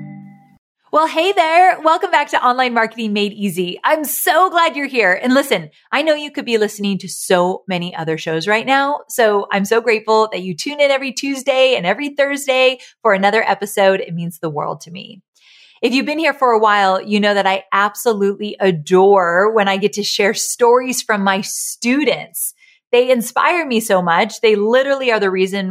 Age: 30-49